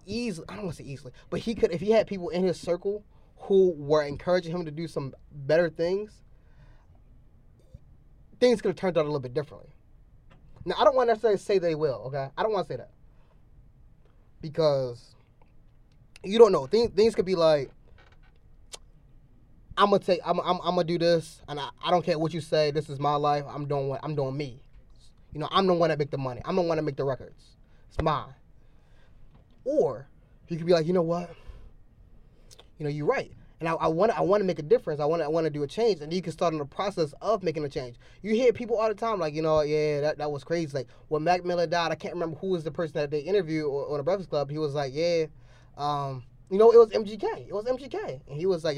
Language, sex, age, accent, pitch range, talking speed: English, male, 20-39, American, 135-175 Hz, 235 wpm